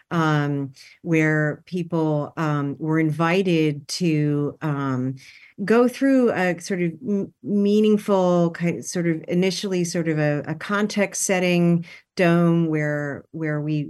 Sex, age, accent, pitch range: female, 40-59, American, 155-185 Hz